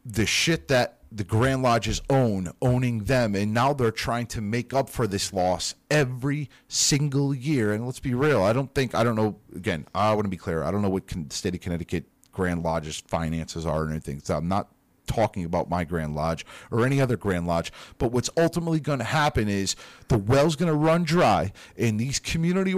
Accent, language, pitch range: American, English, 90-130 Hz